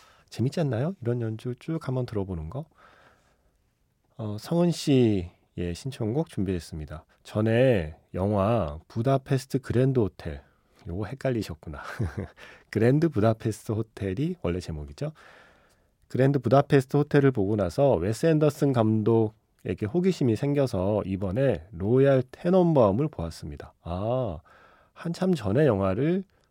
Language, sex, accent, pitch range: Korean, male, native, 95-140 Hz